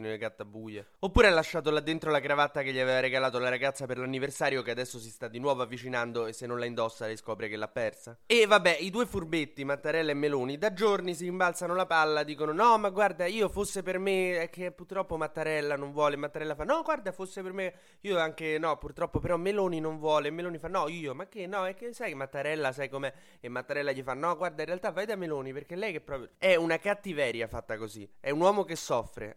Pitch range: 125-175 Hz